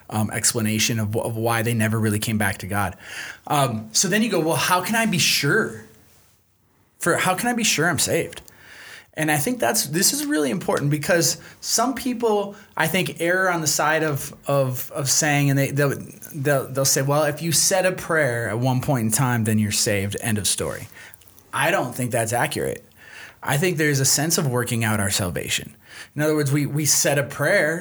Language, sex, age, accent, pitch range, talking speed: English, male, 20-39, American, 115-155 Hz, 210 wpm